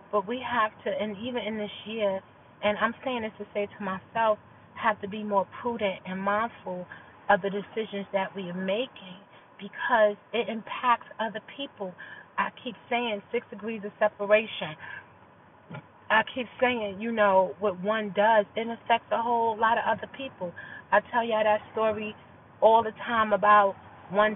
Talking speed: 170 wpm